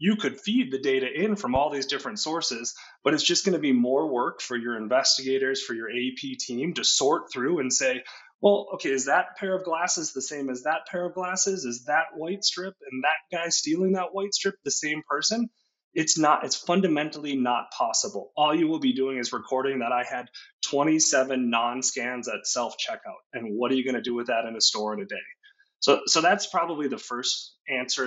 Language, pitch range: English, 130-200 Hz